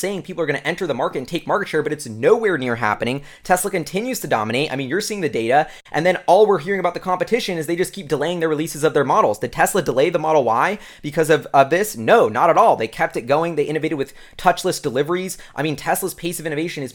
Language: English